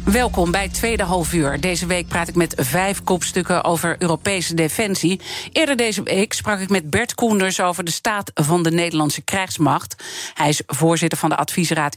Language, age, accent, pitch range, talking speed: Dutch, 40-59, Dutch, 170-225 Hz, 180 wpm